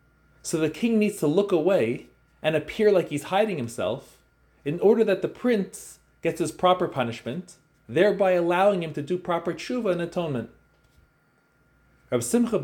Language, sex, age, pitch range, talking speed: English, male, 30-49, 125-180 Hz, 155 wpm